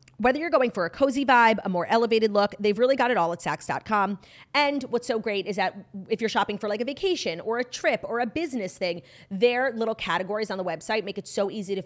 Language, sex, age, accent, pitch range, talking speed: English, female, 30-49, American, 175-240 Hz, 250 wpm